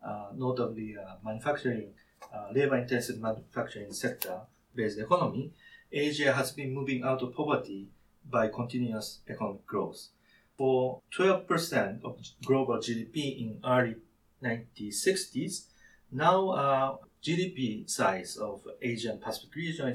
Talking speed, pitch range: 110 wpm, 115-145 Hz